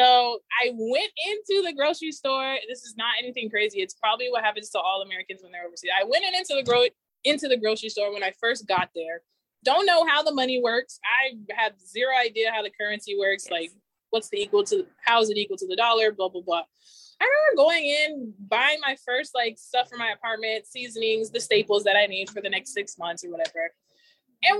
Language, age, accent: English, 20-39, American